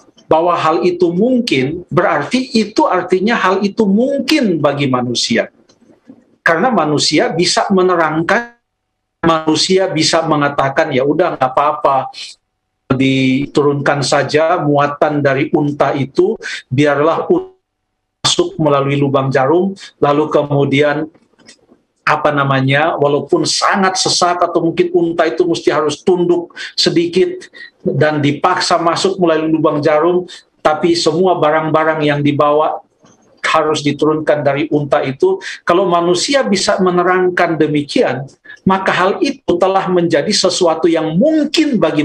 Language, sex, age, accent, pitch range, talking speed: Indonesian, male, 50-69, native, 150-195 Hz, 115 wpm